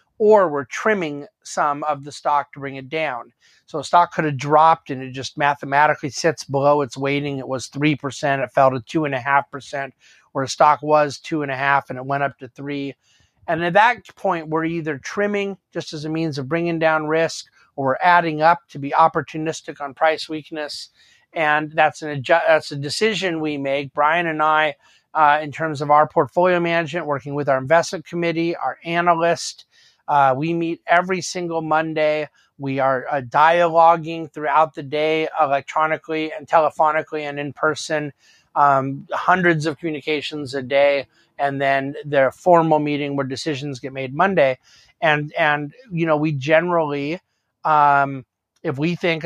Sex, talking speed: male, 170 wpm